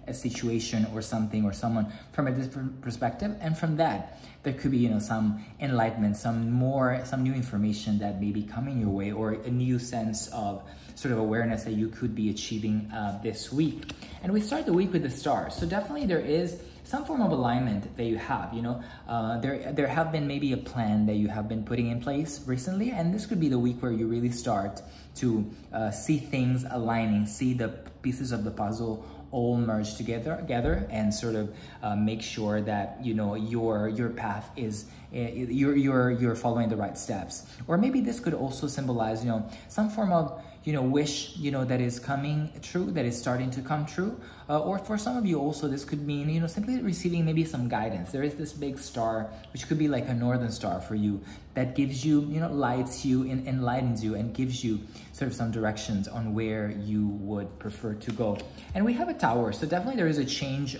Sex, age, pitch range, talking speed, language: male, 20-39, 110-145 Hz, 220 wpm, English